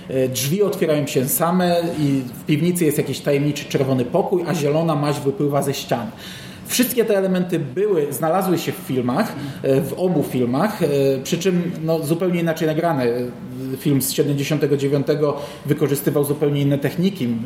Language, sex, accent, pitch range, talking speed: Polish, male, native, 135-170 Hz, 145 wpm